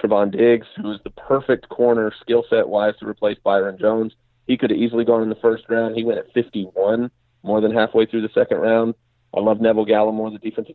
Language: English